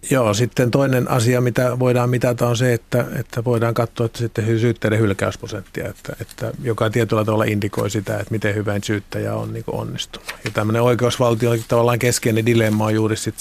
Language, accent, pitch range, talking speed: Finnish, native, 105-120 Hz, 175 wpm